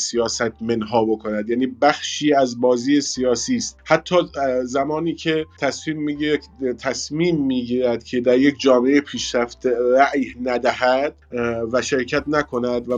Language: Persian